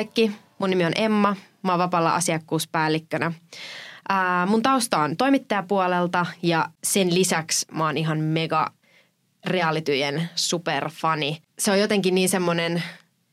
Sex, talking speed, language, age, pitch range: female, 115 wpm, Finnish, 20-39, 165-195 Hz